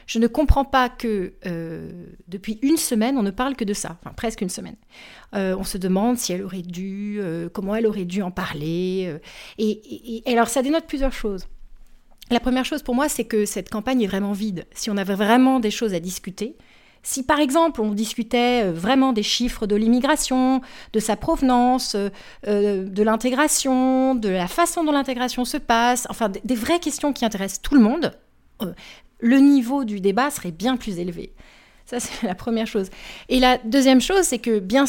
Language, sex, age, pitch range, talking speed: French, female, 40-59, 200-260 Hz, 200 wpm